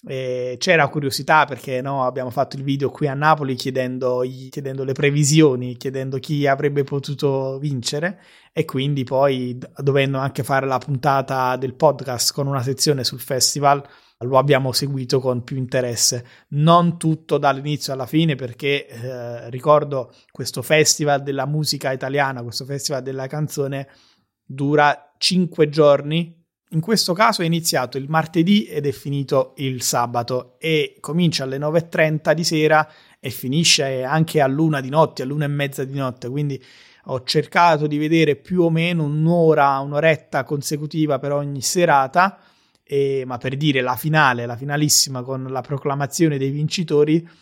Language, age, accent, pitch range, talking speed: Italian, 20-39, native, 130-155 Hz, 150 wpm